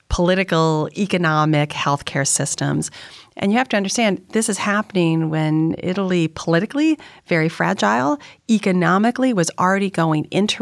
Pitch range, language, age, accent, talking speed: 150-200 Hz, English, 40-59, American, 125 wpm